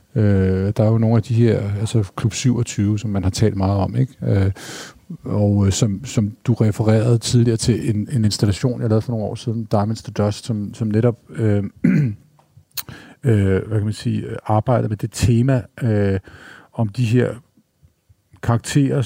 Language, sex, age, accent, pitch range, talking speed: Danish, male, 50-69, native, 100-120 Hz, 170 wpm